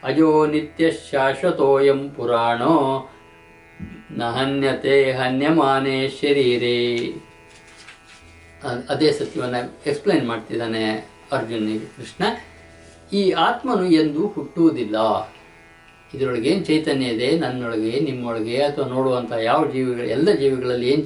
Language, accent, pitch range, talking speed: Kannada, native, 125-180 Hz, 85 wpm